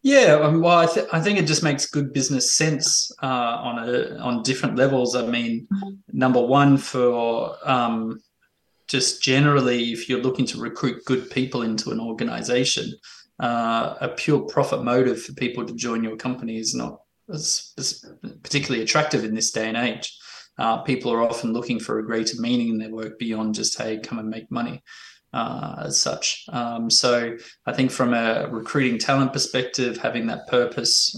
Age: 20-39